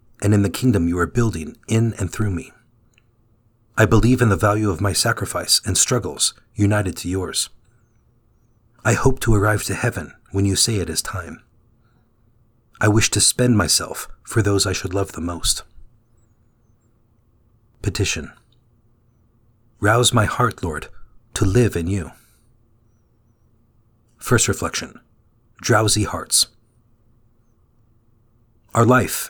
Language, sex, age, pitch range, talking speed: English, male, 40-59, 100-115 Hz, 130 wpm